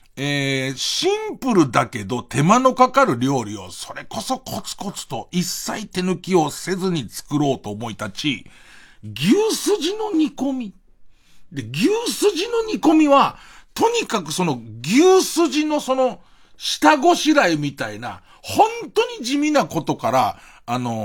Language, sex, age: Japanese, male, 50-69